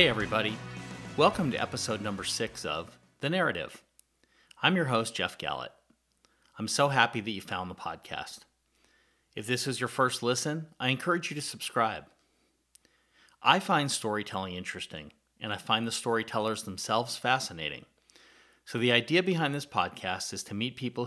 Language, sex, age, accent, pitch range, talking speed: English, male, 40-59, American, 105-130 Hz, 155 wpm